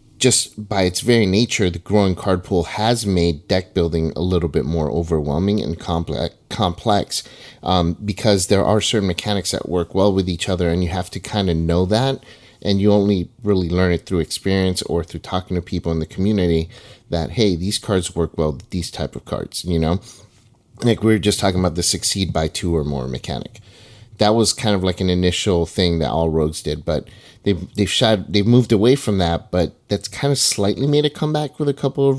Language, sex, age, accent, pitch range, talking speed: English, male, 30-49, American, 90-110 Hz, 215 wpm